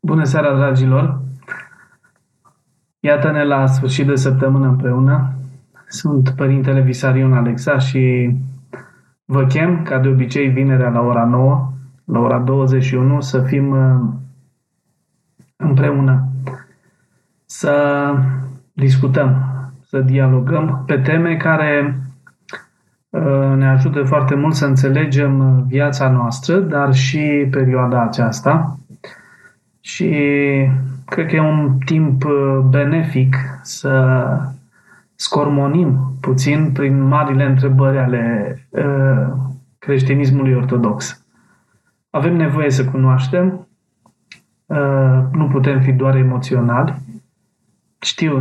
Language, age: Romanian, 20-39